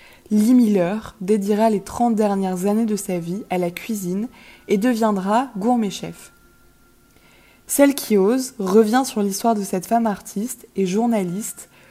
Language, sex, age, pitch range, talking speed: French, female, 20-39, 195-230 Hz, 145 wpm